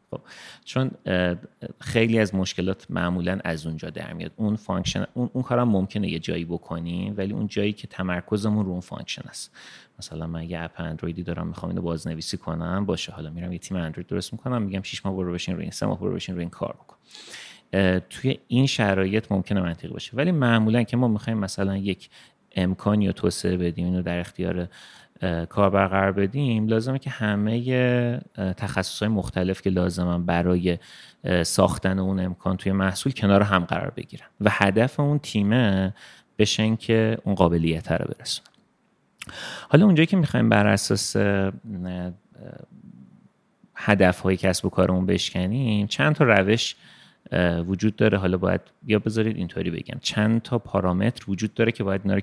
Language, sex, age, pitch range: Persian, male, 30-49, 90-110 Hz